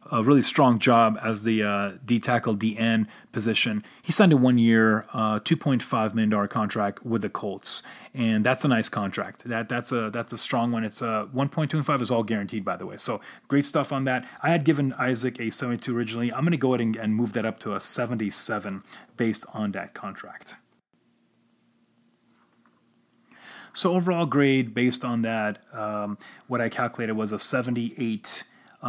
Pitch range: 110-135 Hz